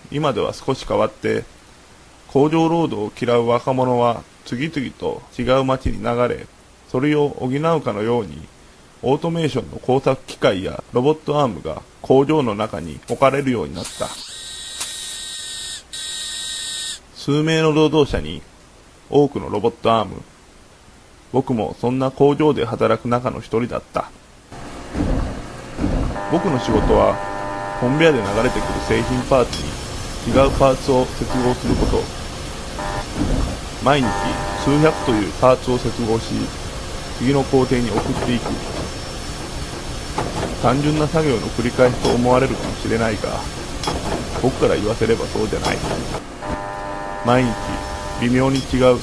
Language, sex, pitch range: Japanese, male, 105-135 Hz